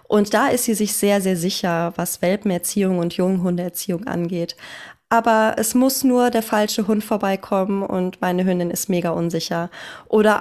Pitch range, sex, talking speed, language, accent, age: 190-230 Hz, female, 160 wpm, German, German, 20-39